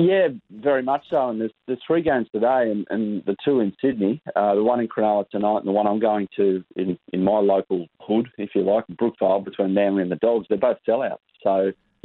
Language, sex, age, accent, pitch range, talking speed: English, male, 30-49, Australian, 95-115 Hz, 235 wpm